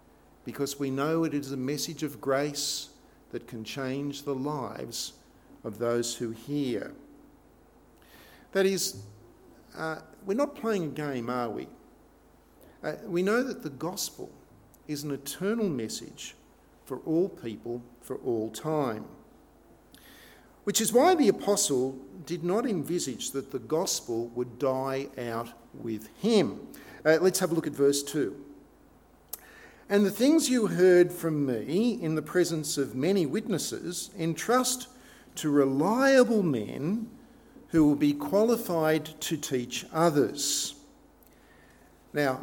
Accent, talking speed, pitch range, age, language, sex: Australian, 130 wpm, 130-175 Hz, 50-69, English, male